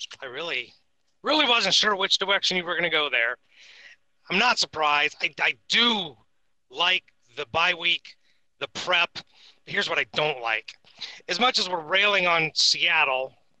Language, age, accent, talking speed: English, 30-49, American, 165 wpm